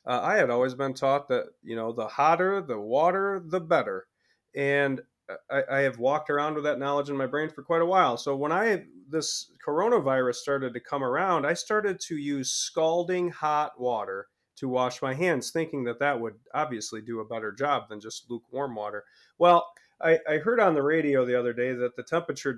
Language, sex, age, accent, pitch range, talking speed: English, male, 30-49, American, 130-175 Hz, 205 wpm